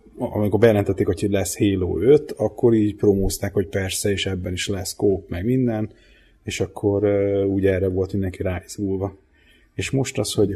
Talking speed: 170 wpm